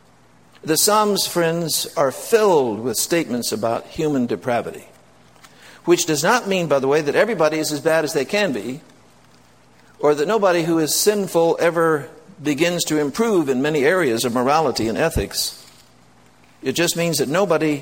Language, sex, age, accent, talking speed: English, male, 60-79, American, 160 wpm